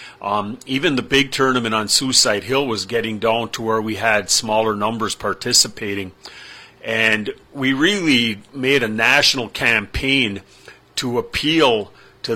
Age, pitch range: 40-59, 105-120 Hz